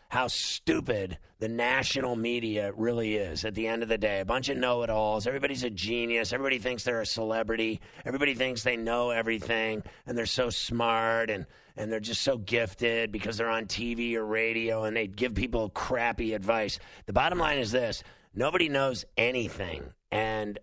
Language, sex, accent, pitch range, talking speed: English, male, American, 105-120 Hz, 175 wpm